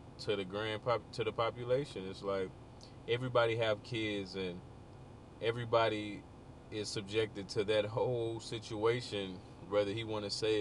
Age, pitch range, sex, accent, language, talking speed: 20-39, 100-120 Hz, male, American, English, 140 wpm